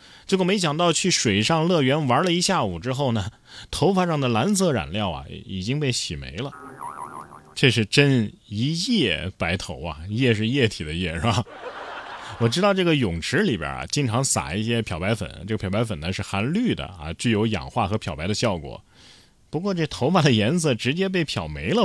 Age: 30-49